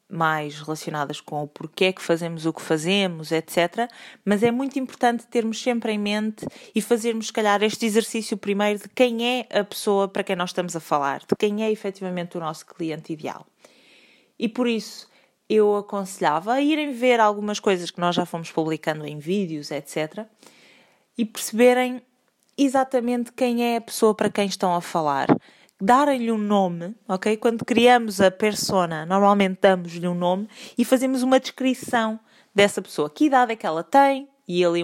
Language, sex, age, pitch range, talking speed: Portuguese, female, 20-39, 175-235 Hz, 175 wpm